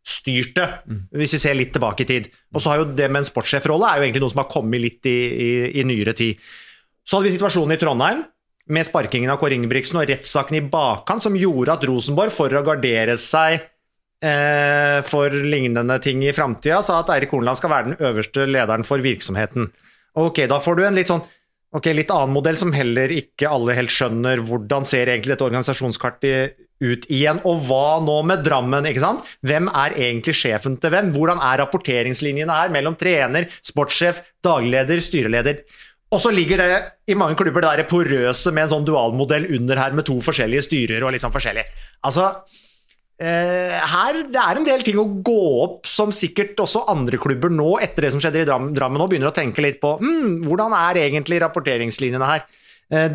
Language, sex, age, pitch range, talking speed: English, male, 30-49, 130-170 Hz, 200 wpm